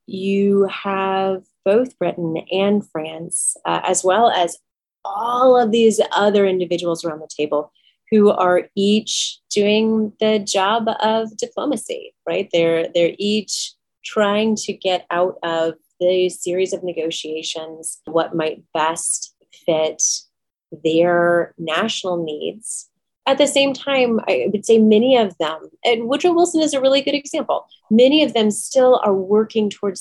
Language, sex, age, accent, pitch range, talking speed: English, female, 30-49, American, 165-210 Hz, 140 wpm